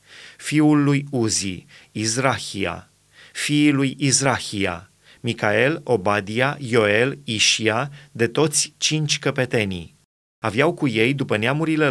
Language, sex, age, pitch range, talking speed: Romanian, male, 30-49, 115-145 Hz, 100 wpm